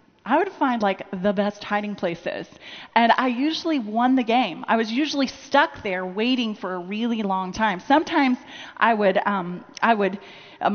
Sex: female